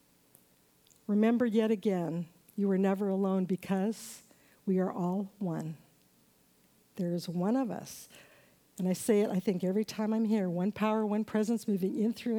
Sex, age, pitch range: female, 60-79, 190-245 Hz